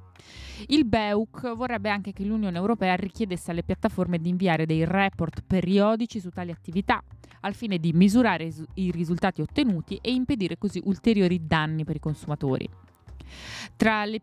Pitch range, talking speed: 160-200 Hz, 150 wpm